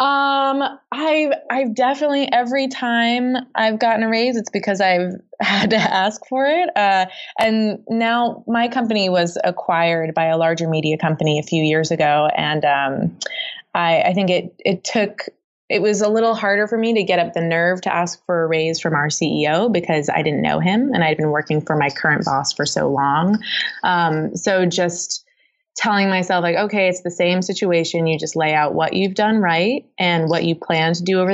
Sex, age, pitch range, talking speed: female, 20-39, 165-220 Hz, 200 wpm